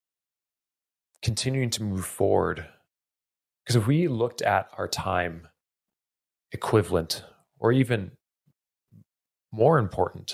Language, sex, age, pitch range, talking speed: English, male, 30-49, 90-110 Hz, 95 wpm